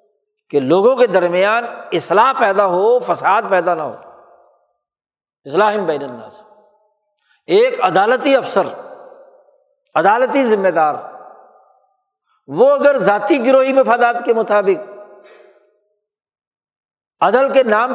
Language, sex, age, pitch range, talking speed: Urdu, male, 60-79, 205-280 Hz, 100 wpm